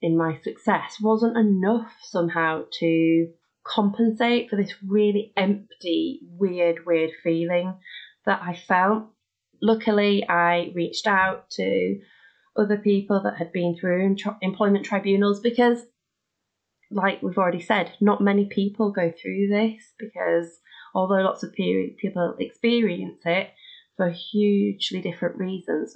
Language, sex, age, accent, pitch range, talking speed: English, female, 20-39, British, 170-210 Hz, 125 wpm